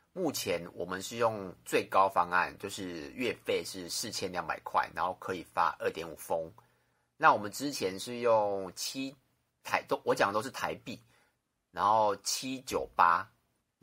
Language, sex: Chinese, male